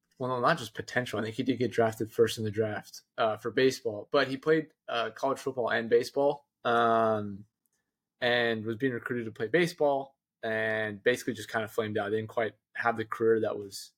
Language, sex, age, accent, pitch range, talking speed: English, male, 20-39, American, 115-140 Hz, 200 wpm